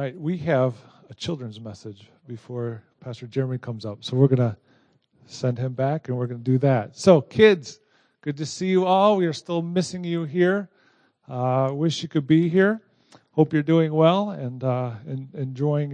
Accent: American